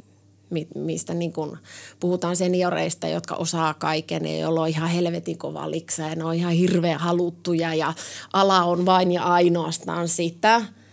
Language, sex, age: Finnish, female, 20-39